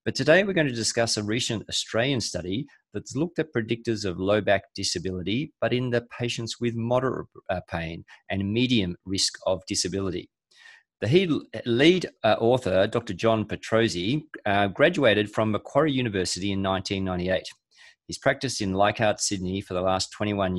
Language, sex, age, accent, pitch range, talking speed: English, male, 30-49, Australian, 95-115 Hz, 150 wpm